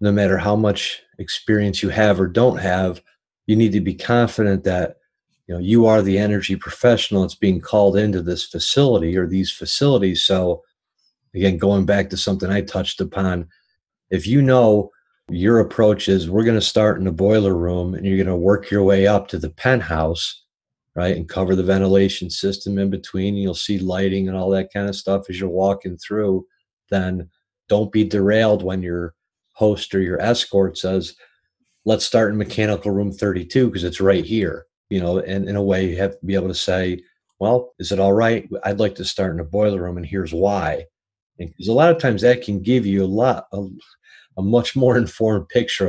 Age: 50-69